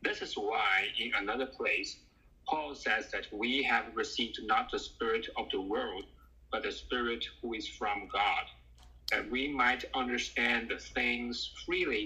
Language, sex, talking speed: English, male, 160 wpm